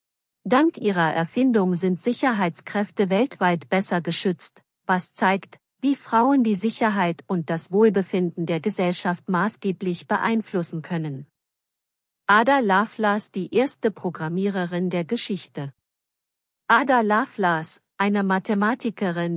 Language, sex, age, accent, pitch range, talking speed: German, female, 50-69, German, 175-220 Hz, 100 wpm